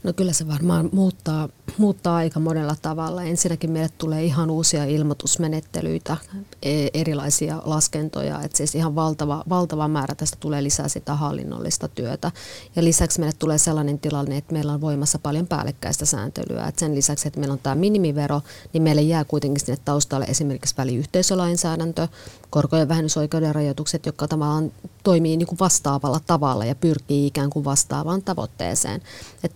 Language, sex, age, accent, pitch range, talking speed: Finnish, female, 30-49, native, 145-165 Hz, 150 wpm